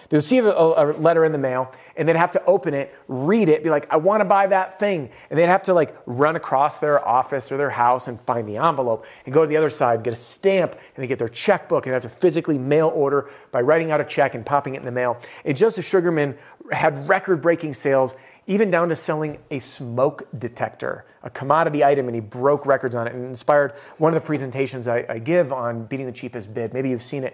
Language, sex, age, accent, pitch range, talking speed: English, male, 30-49, American, 130-165 Hz, 245 wpm